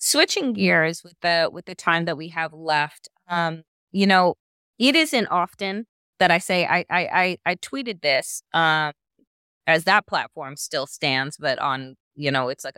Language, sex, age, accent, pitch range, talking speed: English, female, 20-39, American, 160-205 Hz, 180 wpm